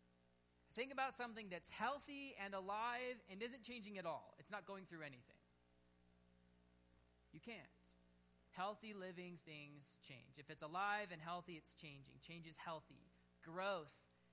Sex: male